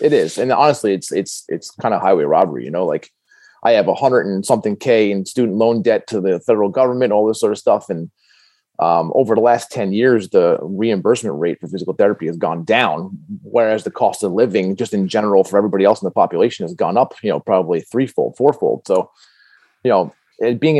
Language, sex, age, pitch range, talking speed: English, male, 30-49, 105-135 Hz, 220 wpm